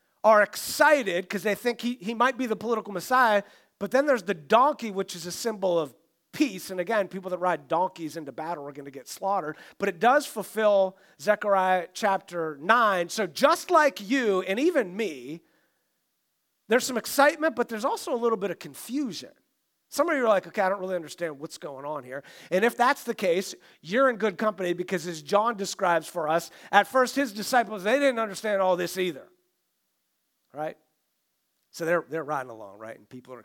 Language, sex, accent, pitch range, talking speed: English, male, American, 145-220 Hz, 195 wpm